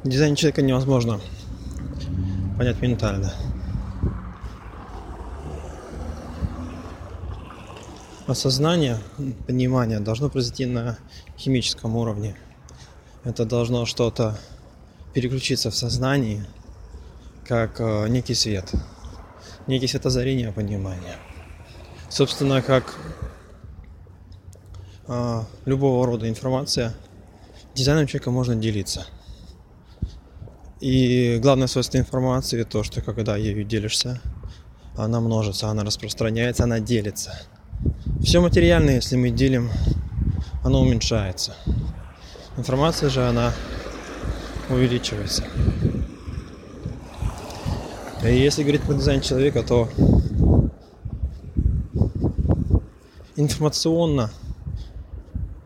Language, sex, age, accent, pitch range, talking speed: Russian, male, 20-39, native, 90-130 Hz, 75 wpm